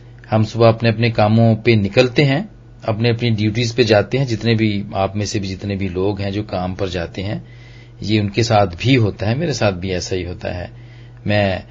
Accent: native